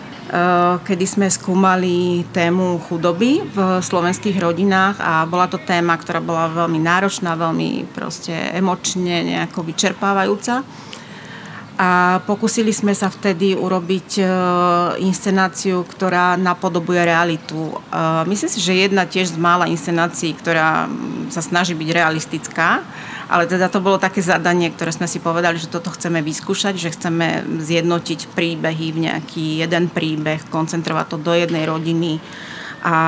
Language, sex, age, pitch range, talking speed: Slovak, female, 30-49, 165-190 Hz, 130 wpm